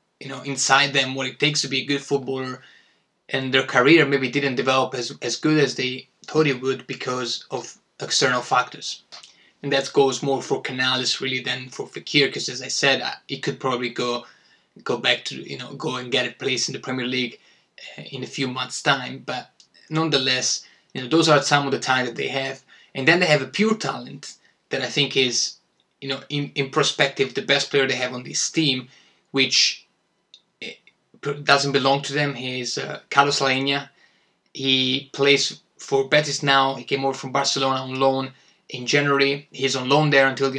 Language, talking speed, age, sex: Italian, 200 wpm, 20-39, male